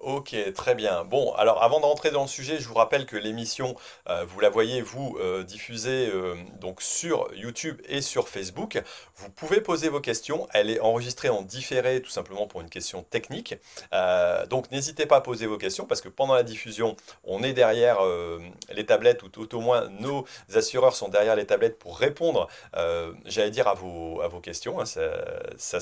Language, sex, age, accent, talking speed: French, male, 30-49, French, 195 wpm